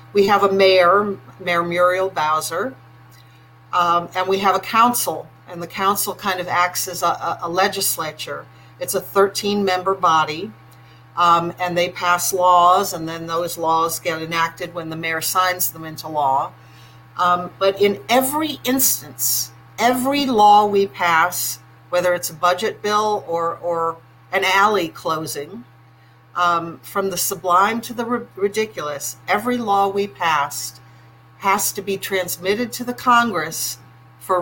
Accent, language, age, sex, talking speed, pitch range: American, English, 50-69, female, 145 wpm, 125-200 Hz